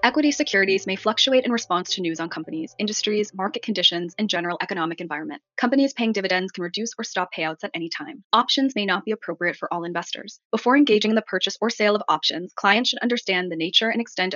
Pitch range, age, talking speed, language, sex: 180-235 Hz, 20-39, 215 wpm, English, female